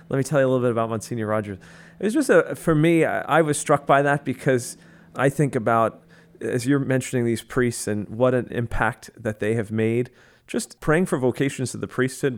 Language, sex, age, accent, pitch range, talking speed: English, male, 40-59, American, 105-130 Hz, 220 wpm